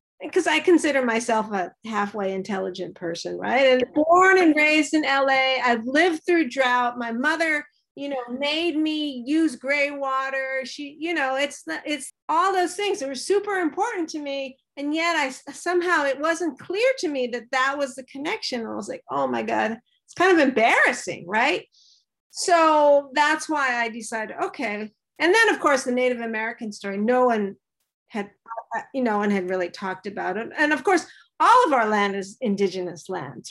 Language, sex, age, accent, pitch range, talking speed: English, female, 40-59, American, 215-305 Hz, 185 wpm